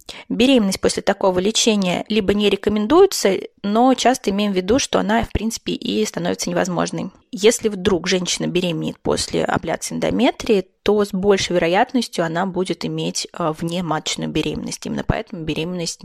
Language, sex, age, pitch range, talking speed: Russian, female, 20-39, 185-235 Hz, 145 wpm